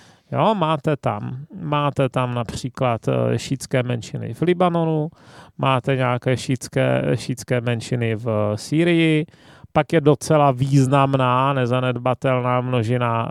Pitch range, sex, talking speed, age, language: 125-160 Hz, male, 105 wpm, 30-49, Czech